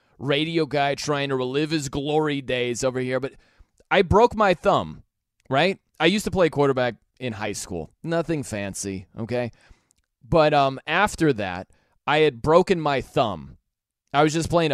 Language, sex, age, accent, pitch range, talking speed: English, male, 30-49, American, 125-165 Hz, 165 wpm